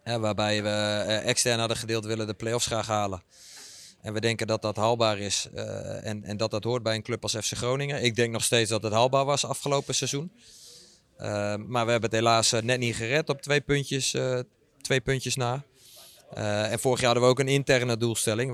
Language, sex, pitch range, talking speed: Dutch, male, 115-130 Hz, 215 wpm